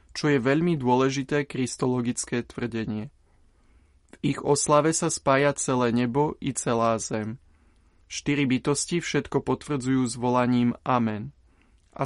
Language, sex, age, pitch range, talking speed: Slovak, male, 20-39, 120-145 Hz, 115 wpm